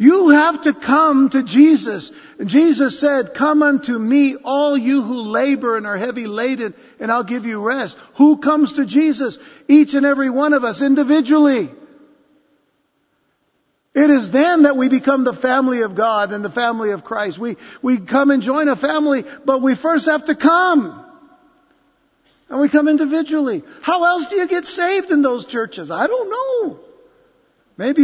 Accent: American